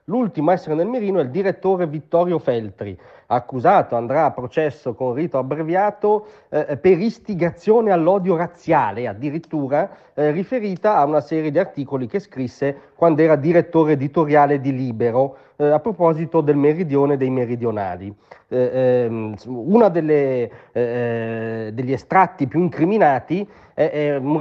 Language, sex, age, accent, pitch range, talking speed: Italian, male, 40-59, native, 135-185 Hz, 140 wpm